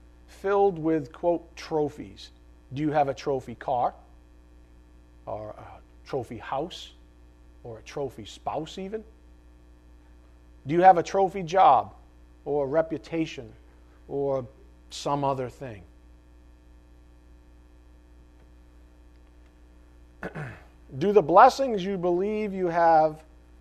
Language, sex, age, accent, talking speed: English, male, 40-59, American, 100 wpm